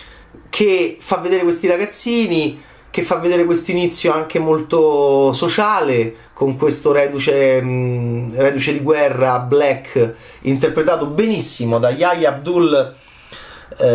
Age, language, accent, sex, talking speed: 30-49, Italian, native, male, 115 wpm